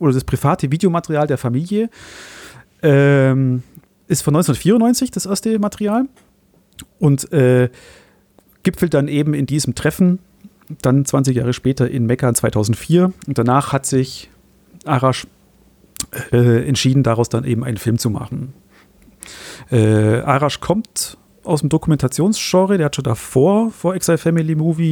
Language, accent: German, German